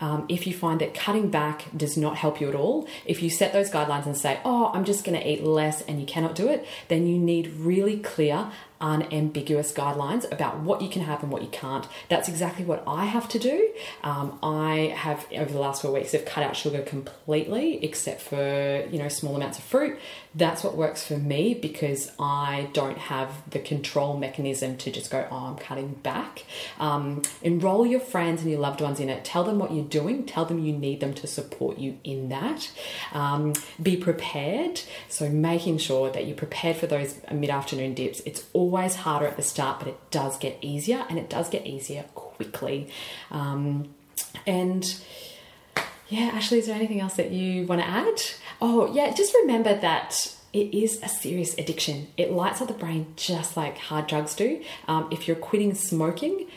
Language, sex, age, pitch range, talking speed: English, female, 30-49, 145-185 Hz, 200 wpm